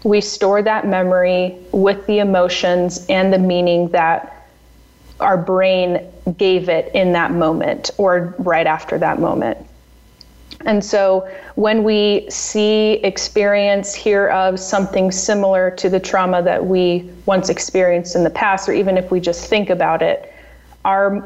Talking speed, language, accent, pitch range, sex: 145 wpm, English, American, 175-195 Hz, female